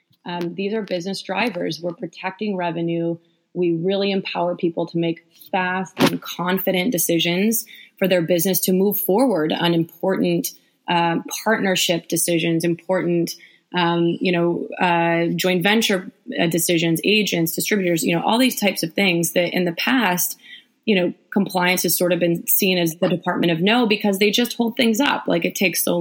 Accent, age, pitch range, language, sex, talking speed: American, 20-39, 170-205 Hz, English, female, 170 wpm